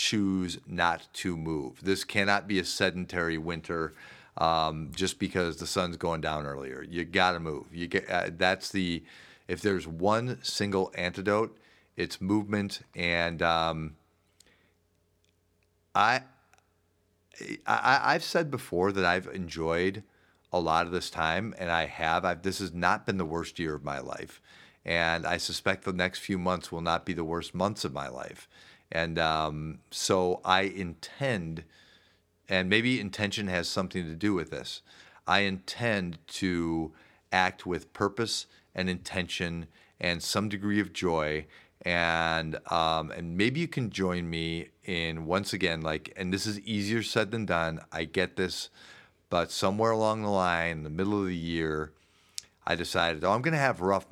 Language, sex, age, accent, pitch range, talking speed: English, male, 40-59, American, 85-100 Hz, 165 wpm